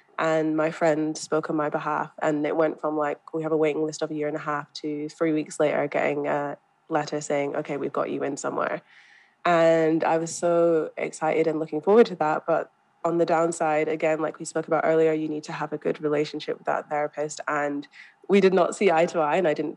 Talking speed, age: 235 wpm, 20-39